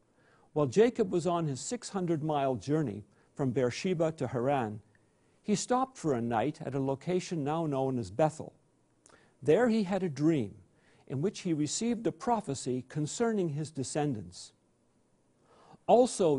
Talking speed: 145 wpm